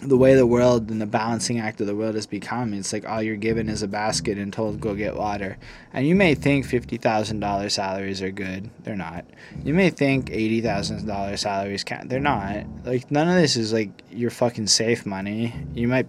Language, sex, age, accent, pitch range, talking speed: English, male, 20-39, American, 105-125 Hz, 230 wpm